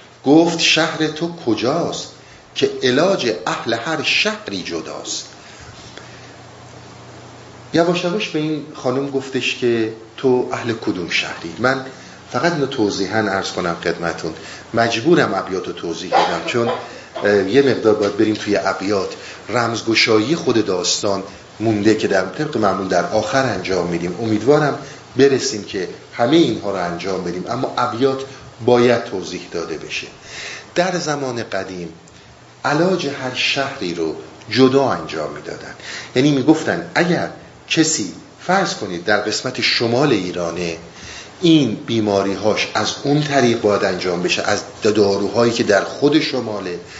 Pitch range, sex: 105-140 Hz, male